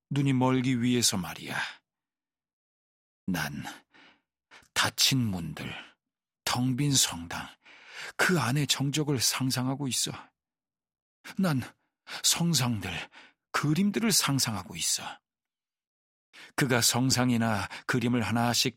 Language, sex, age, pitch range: Korean, male, 40-59, 120-150 Hz